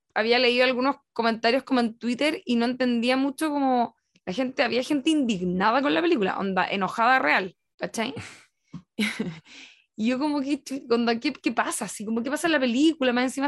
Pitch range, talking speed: 230-275 Hz, 185 wpm